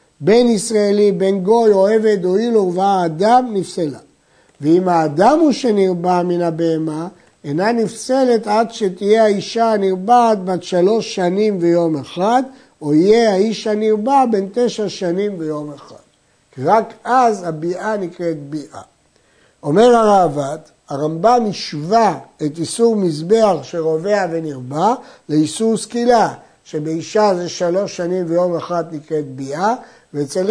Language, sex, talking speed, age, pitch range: Hebrew, male, 120 wpm, 60-79, 165-220 Hz